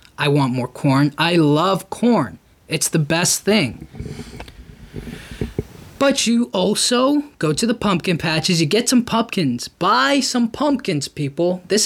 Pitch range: 145-195 Hz